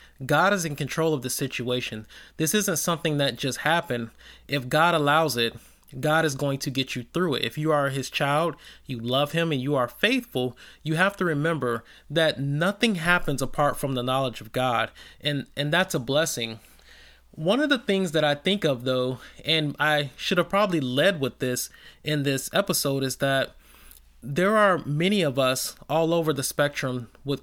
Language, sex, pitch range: English, male, 135-170 Hz